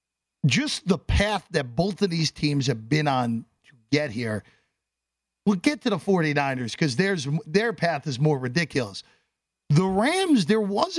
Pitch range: 145-200 Hz